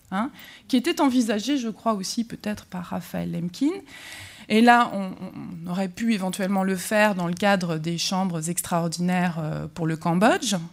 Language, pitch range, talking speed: French, 180-230 Hz, 160 wpm